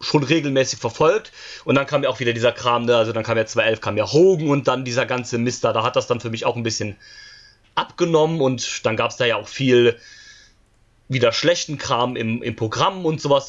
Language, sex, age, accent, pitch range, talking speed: German, male, 30-49, German, 120-155 Hz, 230 wpm